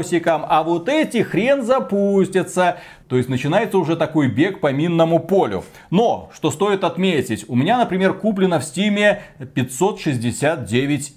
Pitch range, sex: 130-175 Hz, male